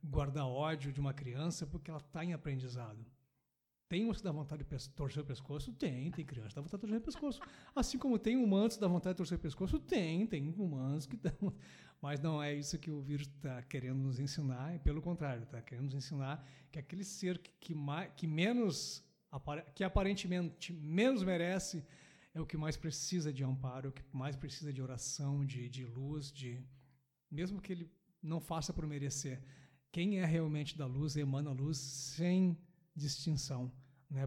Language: Portuguese